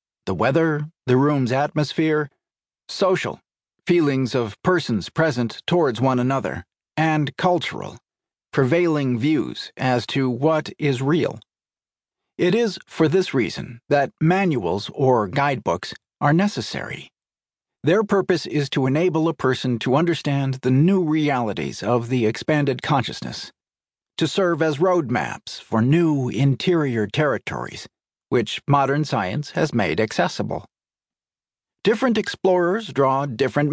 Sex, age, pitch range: male, 50-69, 130-165 Hz